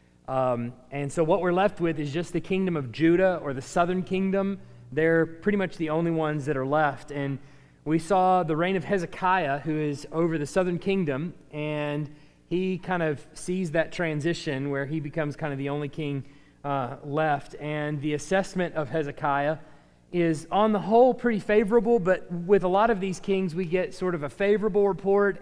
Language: English